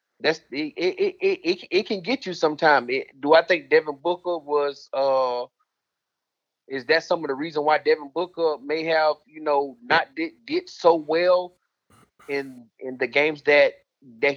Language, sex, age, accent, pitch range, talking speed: English, male, 30-49, American, 130-170 Hz, 170 wpm